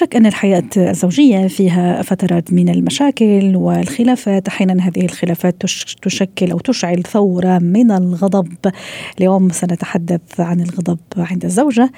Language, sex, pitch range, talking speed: Arabic, female, 180-210 Hz, 120 wpm